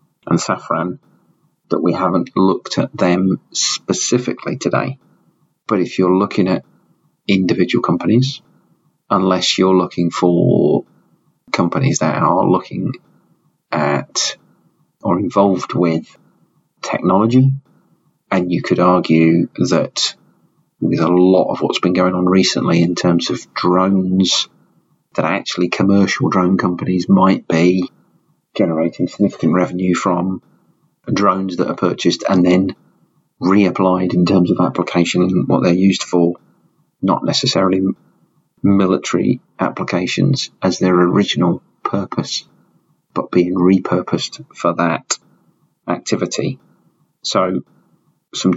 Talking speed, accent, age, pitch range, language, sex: 110 wpm, British, 40-59, 90-95 Hz, English, male